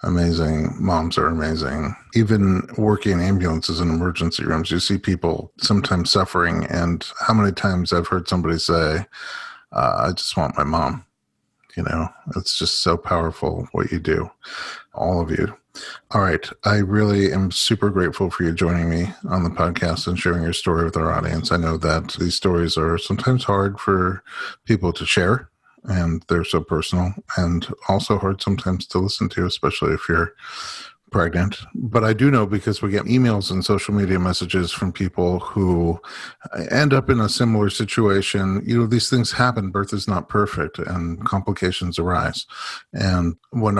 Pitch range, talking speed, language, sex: 85-105 Hz, 170 wpm, English, male